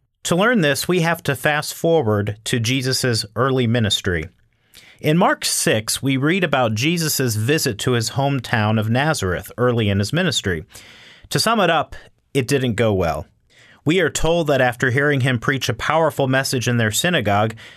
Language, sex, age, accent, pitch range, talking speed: English, male, 40-59, American, 110-155 Hz, 170 wpm